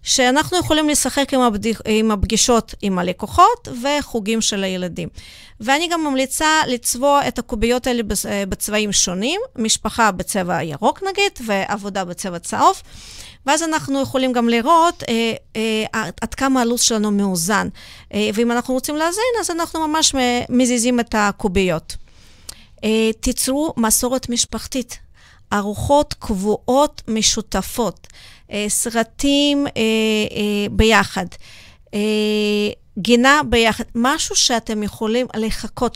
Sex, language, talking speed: female, Hebrew, 115 wpm